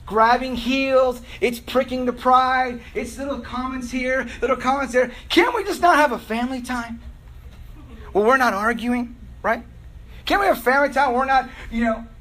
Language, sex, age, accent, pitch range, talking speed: English, male, 30-49, American, 220-270 Hz, 170 wpm